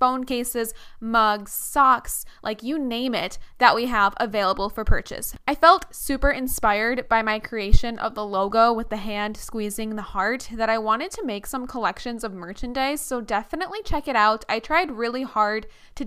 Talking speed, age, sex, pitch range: 185 wpm, 10-29, female, 210-265 Hz